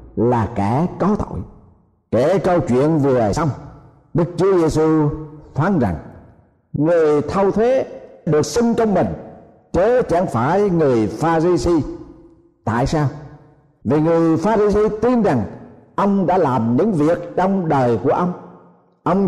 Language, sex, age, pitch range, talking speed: Vietnamese, male, 50-69, 135-195 Hz, 135 wpm